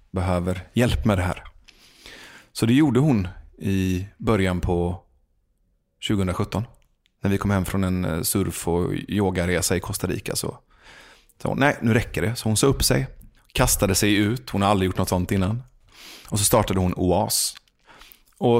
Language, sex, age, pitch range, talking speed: English, male, 30-49, 90-110 Hz, 170 wpm